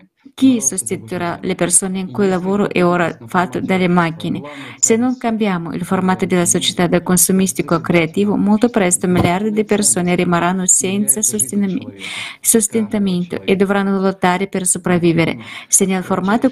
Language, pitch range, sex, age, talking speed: Italian, 175-210 Hz, female, 20-39, 140 wpm